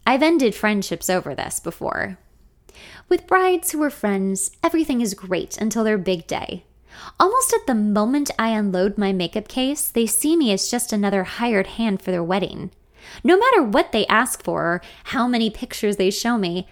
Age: 20-39